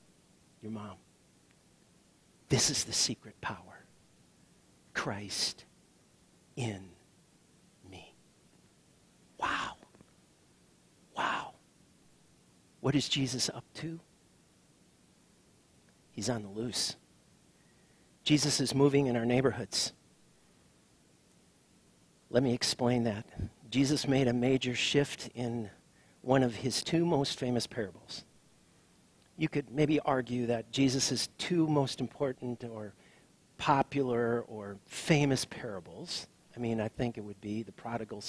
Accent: American